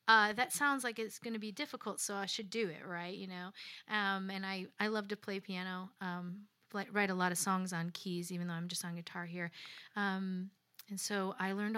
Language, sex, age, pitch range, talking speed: English, female, 30-49, 180-210 Hz, 235 wpm